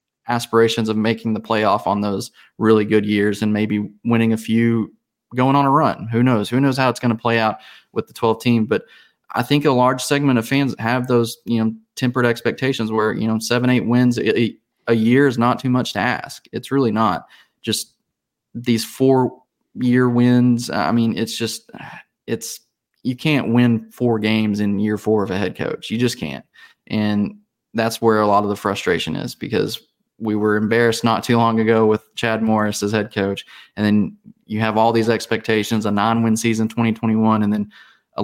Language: English